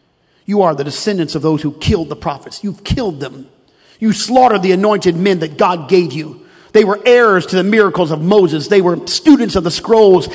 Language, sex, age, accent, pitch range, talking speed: English, male, 50-69, American, 200-265 Hz, 210 wpm